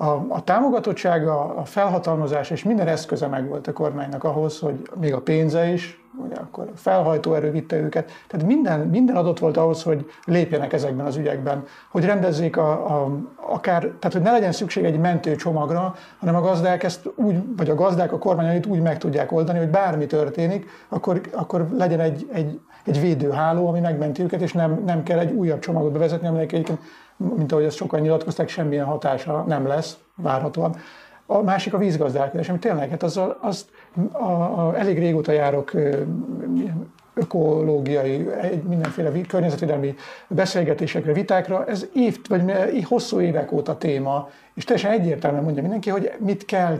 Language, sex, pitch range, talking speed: Hungarian, male, 150-185 Hz, 170 wpm